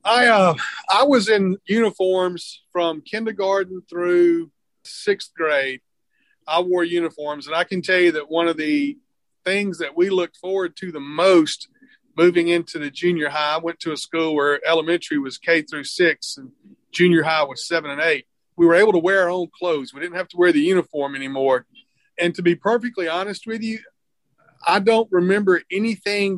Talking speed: 185 wpm